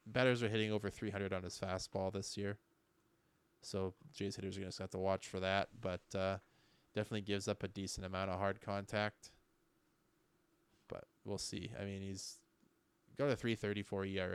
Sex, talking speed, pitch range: male, 185 wpm, 95-105 Hz